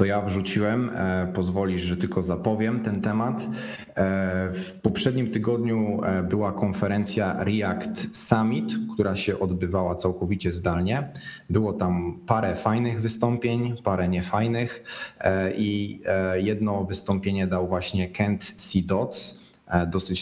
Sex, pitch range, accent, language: male, 95-110 Hz, native, Polish